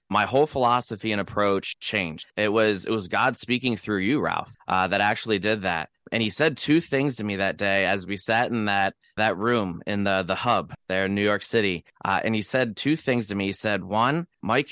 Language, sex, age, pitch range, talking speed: English, male, 20-39, 100-120 Hz, 230 wpm